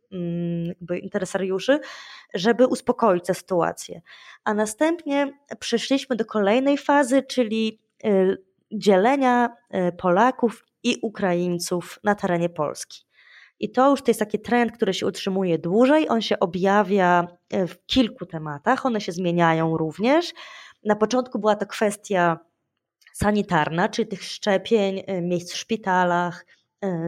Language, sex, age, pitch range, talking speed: Polish, female, 20-39, 180-230 Hz, 115 wpm